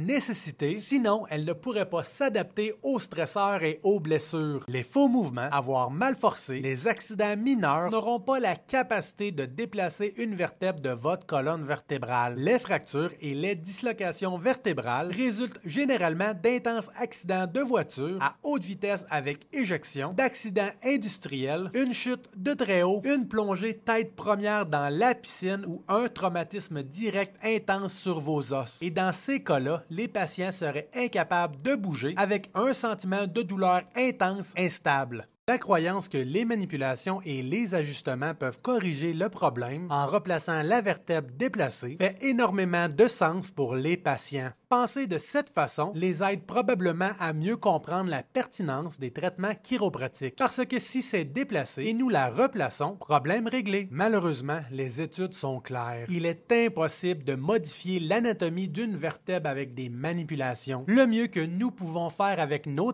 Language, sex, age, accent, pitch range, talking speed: French, male, 30-49, Canadian, 155-225 Hz, 155 wpm